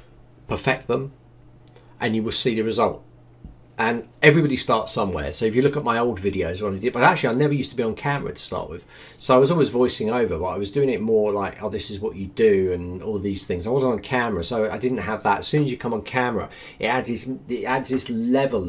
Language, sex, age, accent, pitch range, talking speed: English, male, 40-59, British, 105-135 Hz, 255 wpm